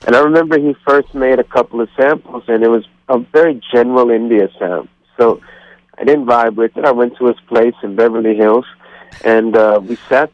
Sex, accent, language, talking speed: male, American, English, 210 wpm